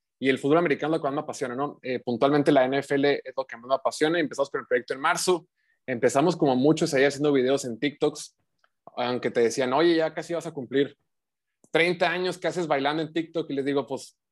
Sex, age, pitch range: male, 20-39, 130-155 Hz